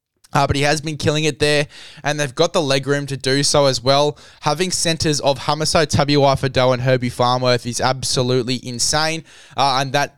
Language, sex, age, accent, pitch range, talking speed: English, male, 10-29, Australian, 120-145 Hz, 200 wpm